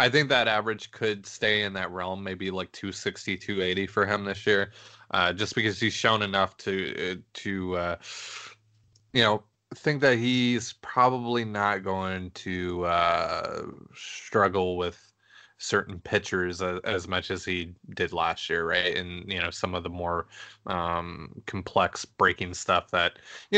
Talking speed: 155 wpm